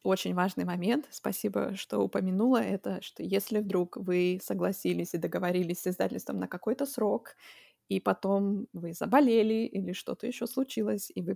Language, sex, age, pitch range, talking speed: Russian, female, 20-39, 175-225 Hz, 155 wpm